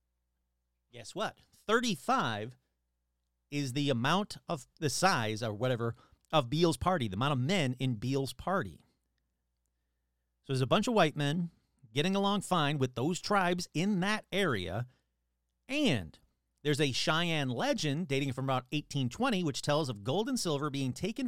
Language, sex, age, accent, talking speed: English, male, 40-59, American, 150 wpm